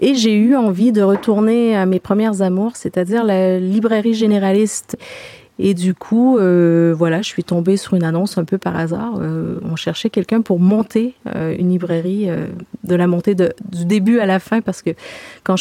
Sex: female